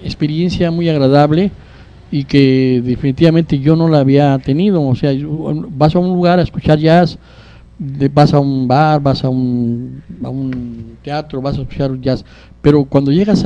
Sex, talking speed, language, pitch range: male, 160 wpm, Spanish, 130-165 Hz